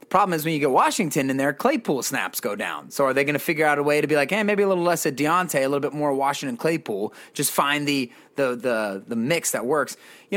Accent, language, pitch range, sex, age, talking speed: American, English, 125-170 Hz, male, 30-49, 270 wpm